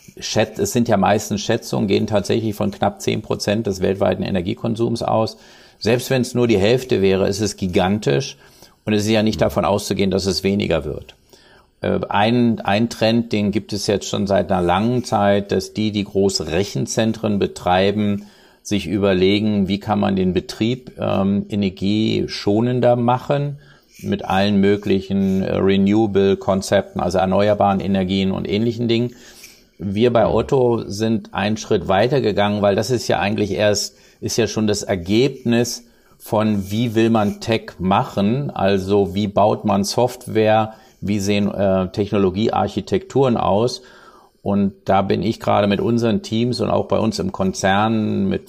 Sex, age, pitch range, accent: male, 50-69, 100-115 Hz, German